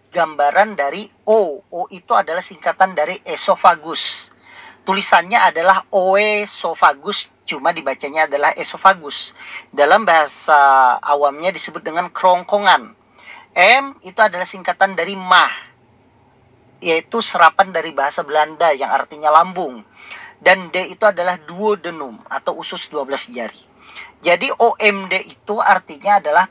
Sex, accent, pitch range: male, native, 160-210 Hz